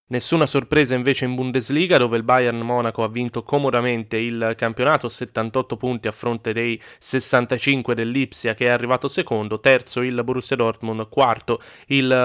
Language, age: Italian, 20-39